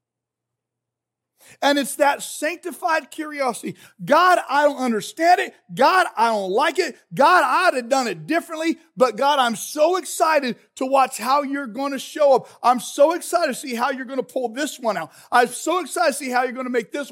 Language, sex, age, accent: English, male, 40-59, American